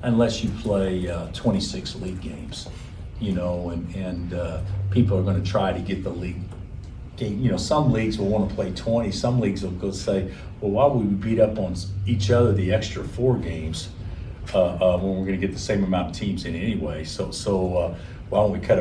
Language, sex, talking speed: English, male, 225 wpm